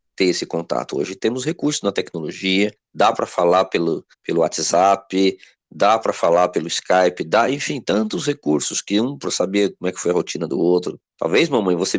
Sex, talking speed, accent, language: male, 190 wpm, Brazilian, Portuguese